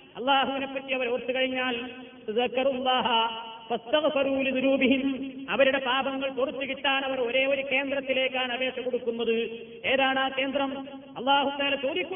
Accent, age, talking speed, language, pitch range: native, 30-49, 75 wpm, Malayalam, 245-280 Hz